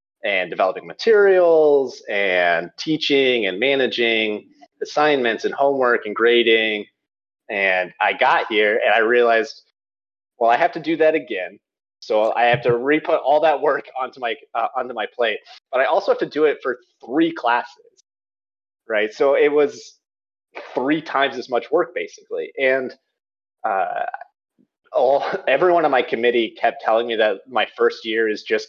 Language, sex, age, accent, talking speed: English, male, 30-49, American, 160 wpm